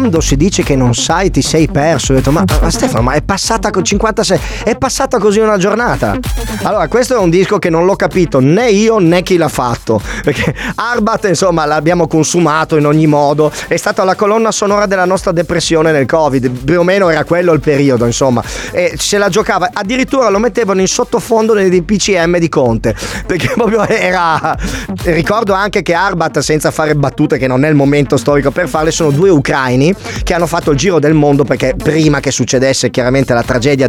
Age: 30-49